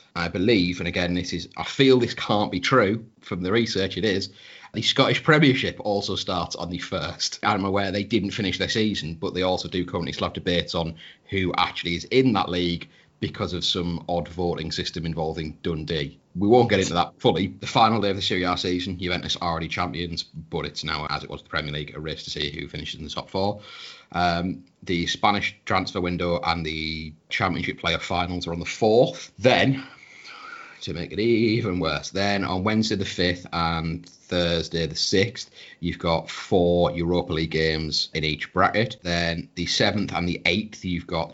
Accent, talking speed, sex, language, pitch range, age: British, 200 wpm, male, English, 80-95 Hz, 30-49